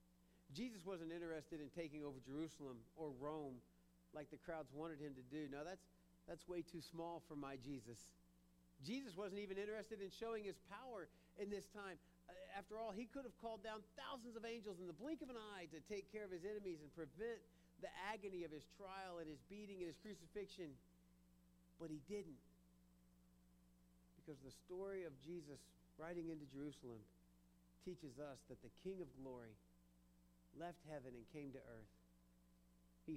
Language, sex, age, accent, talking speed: English, male, 50-69, American, 170 wpm